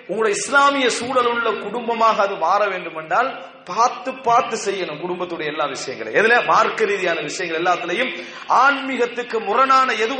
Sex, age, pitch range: male, 40-59, 185-245 Hz